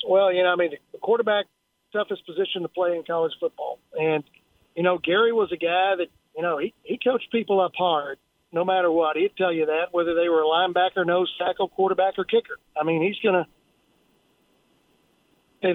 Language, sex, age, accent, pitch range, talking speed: English, male, 50-69, American, 170-200 Hz, 200 wpm